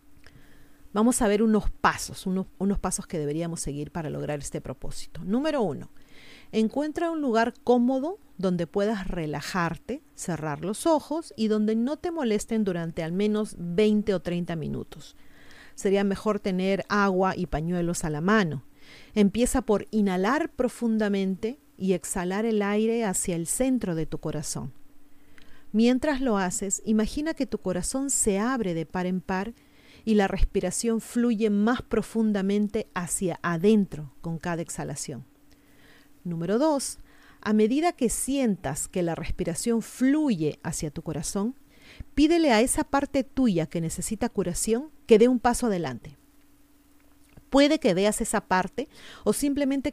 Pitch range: 175-245 Hz